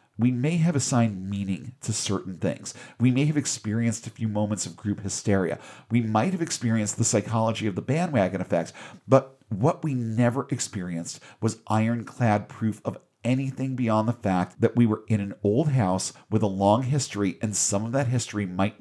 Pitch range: 105-130 Hz